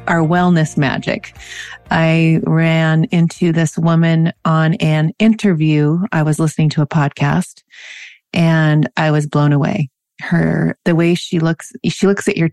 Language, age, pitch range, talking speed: English, 30-49, 155-180 Hz, 150 wpm